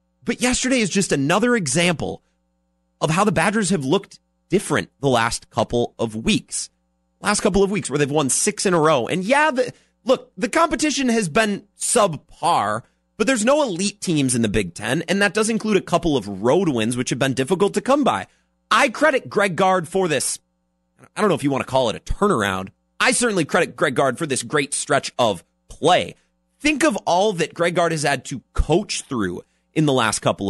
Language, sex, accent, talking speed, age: English, male, American, 205 wpm, 30-49